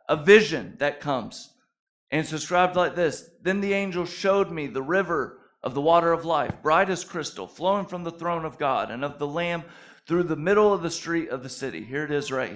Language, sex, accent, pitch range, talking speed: English, male, American, 150-195 Hz, 225 wpm